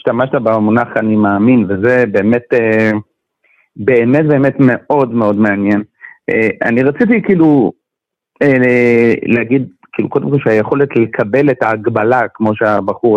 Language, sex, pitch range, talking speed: Hebrew, male, 120-170 Hz, 110 wpm